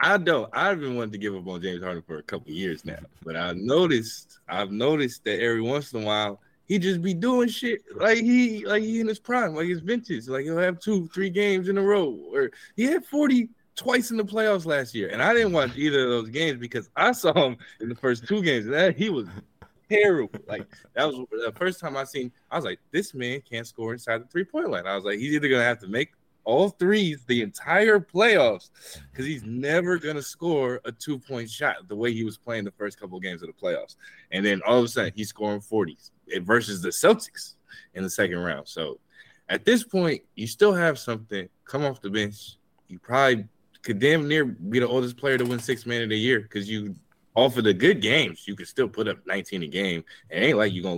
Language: English